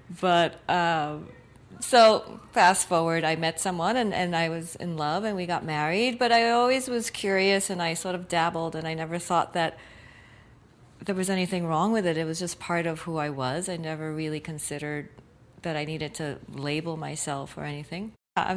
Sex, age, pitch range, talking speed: female, 40-59, 165-200 Hz, 195 wpm